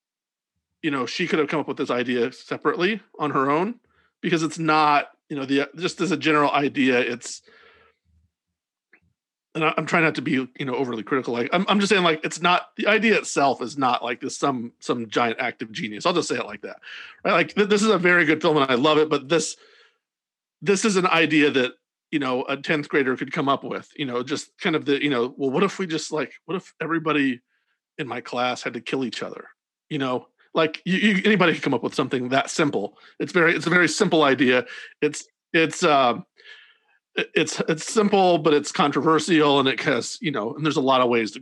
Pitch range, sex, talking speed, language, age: 140-185 Hz, male, 230 wpm, English, 40-59